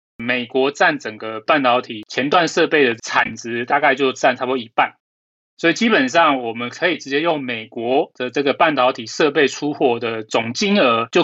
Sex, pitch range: male, 115-150 Hz